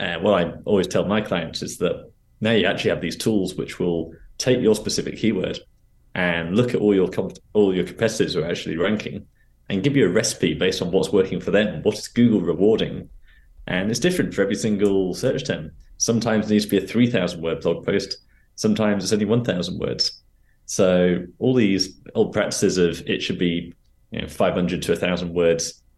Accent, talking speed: British, 205 wpm